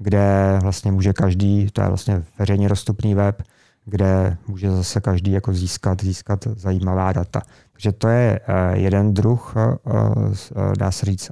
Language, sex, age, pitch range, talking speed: Czech, male, 30-49, 100-110 Hz, 140 wpm